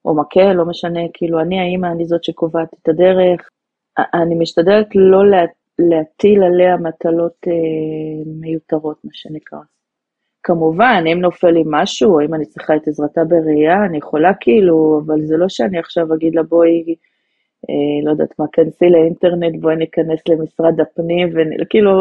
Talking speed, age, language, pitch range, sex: 155 wpm, 30-49, Hebrew, 160-180 Hz, female